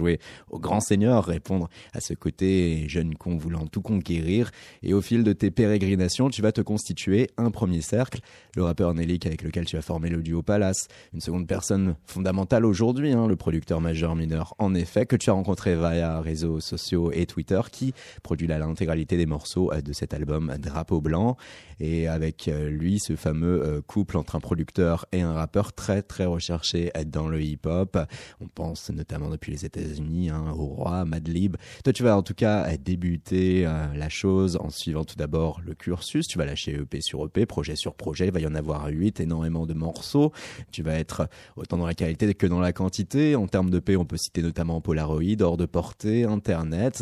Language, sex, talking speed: French, male, 195 wpm